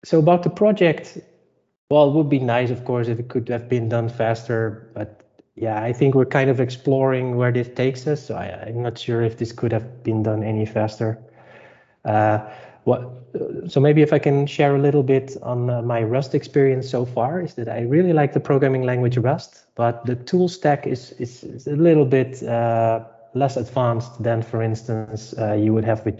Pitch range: 115-135 Hz